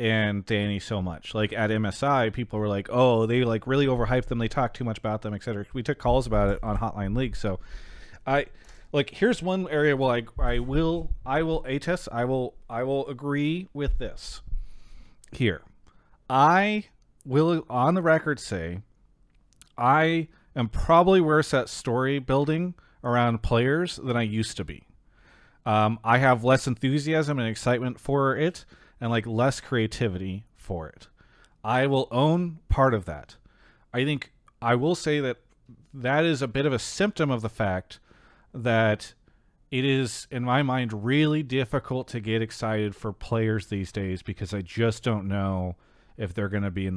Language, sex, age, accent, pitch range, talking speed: English, male, 30-49, American, 110-140 Hz, 170 wpm